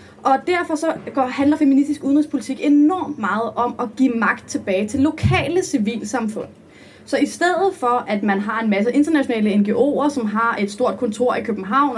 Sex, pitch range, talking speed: female, 220-280 Hz, 170 wpm